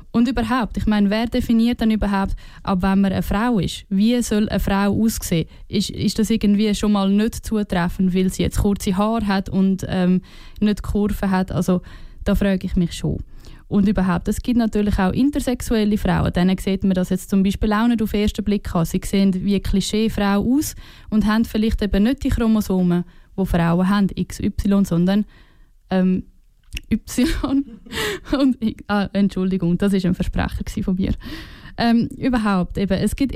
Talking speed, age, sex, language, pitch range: 175 wpm, 10-29, female, German, 185-220 Hz